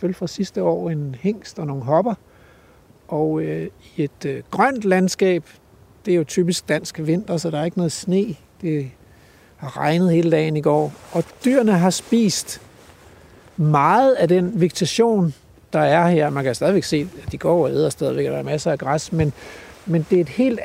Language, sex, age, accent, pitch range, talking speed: Danish, male, 60-79, native, 150-185 Hz, 195 wpm